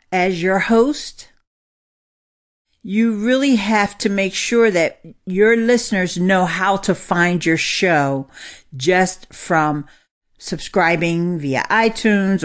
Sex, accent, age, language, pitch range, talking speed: female, American, 50-69, English, 170-250 Hz, 110 wpm